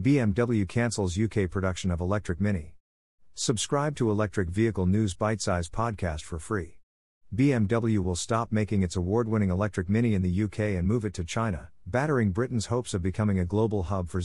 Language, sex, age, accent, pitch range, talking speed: English, male, 50-69, American, 90-110 Hz, 175 wpm